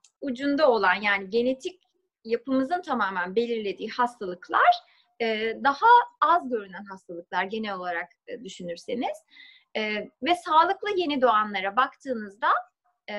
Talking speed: 90 wpm